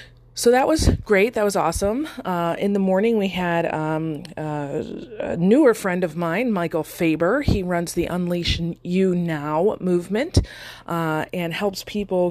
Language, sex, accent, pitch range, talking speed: English, female, American, 165-220 Hz, 160 wpm